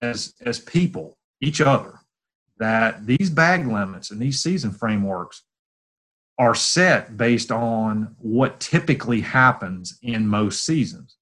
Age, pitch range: 30-49, 100-130 Hz